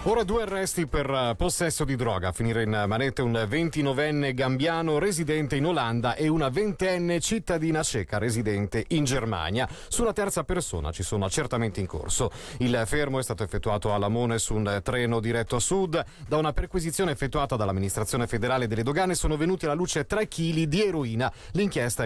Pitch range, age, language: 110-170 Hz, 40-59, Italian